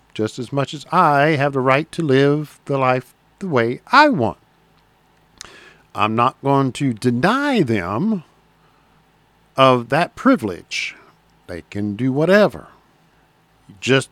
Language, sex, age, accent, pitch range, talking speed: English, male, 50-69, American, 125-195 Hz, 130 wpm